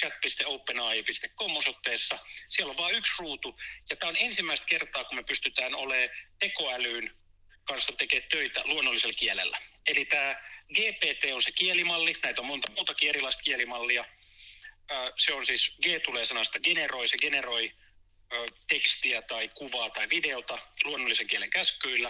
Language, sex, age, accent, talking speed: Finnish, male, 30-49, native, 140 wpm